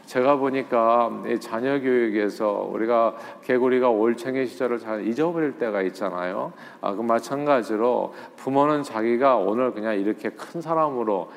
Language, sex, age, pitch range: Korean, male, 40-59, 110-145 Hz